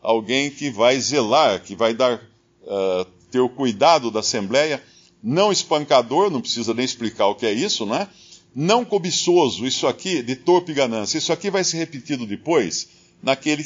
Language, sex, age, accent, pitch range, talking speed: Portuguese, male, 50-69, Brazilian, 125-175 Hz, 160 wpm